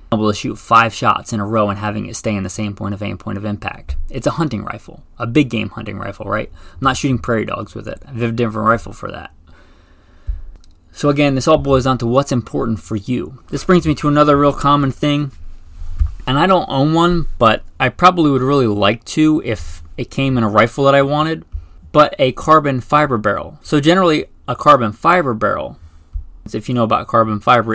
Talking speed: 220 wpm